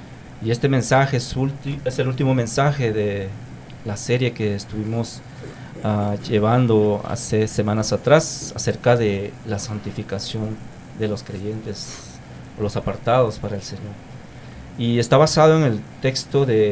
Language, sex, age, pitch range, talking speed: English, male, 40-59, 110-130 Hz, 140 wpm